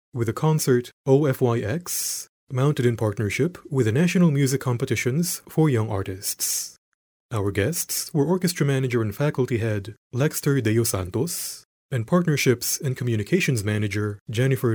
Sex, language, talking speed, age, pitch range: male, English, 130 wpm, 30-49, 105-135 Hz